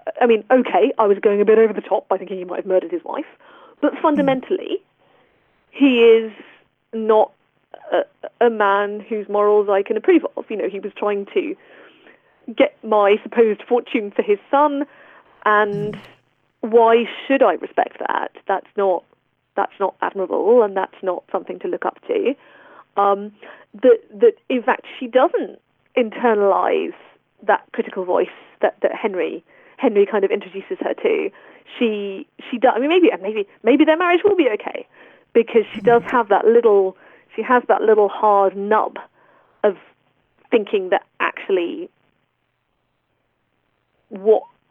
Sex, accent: female, British